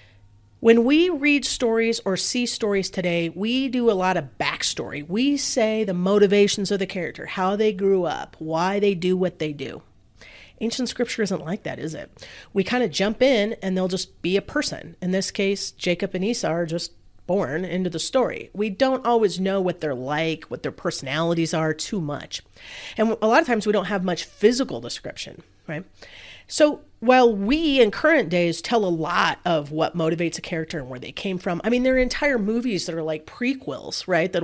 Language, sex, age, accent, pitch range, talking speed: English, female, 40-59, American, 165-230 Hz, 205 wpm